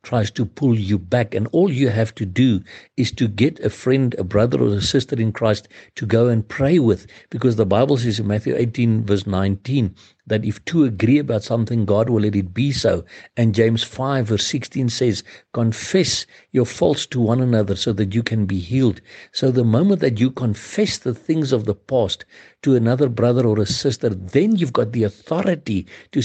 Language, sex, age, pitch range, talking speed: English, male, 60-79, 105-125 Hz, 205 wpm